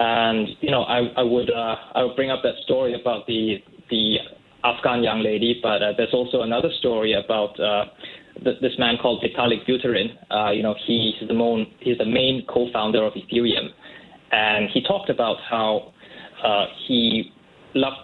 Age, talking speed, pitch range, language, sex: 20-39, 175 wpm, 110-125 Hz, English, male